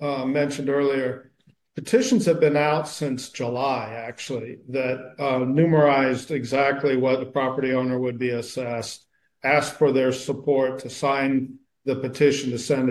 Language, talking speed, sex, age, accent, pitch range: English, 145 wpm, male, 50-69, American, 130-150 Hz